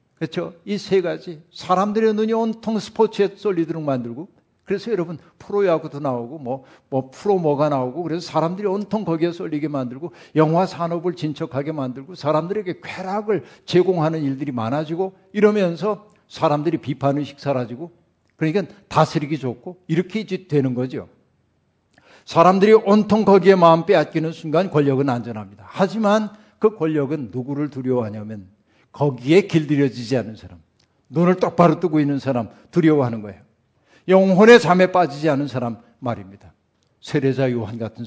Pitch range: 135-185 Hz